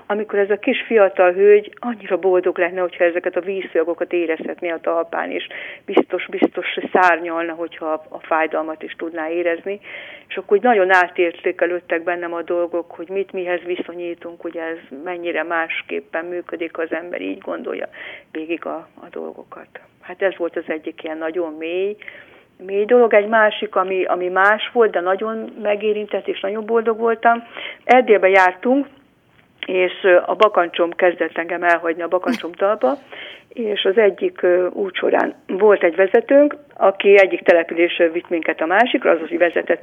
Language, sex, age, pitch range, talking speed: Hungarian, female, 40-59, 170-205 Hz, 150 wpm